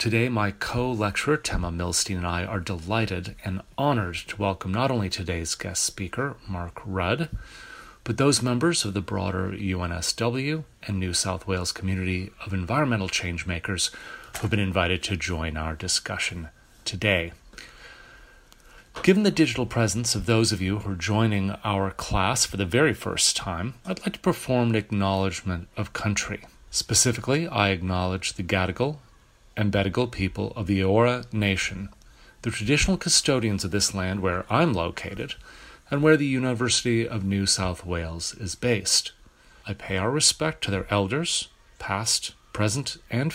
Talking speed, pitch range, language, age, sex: 150 wpm, 95-125 Hz, English, 40-59, male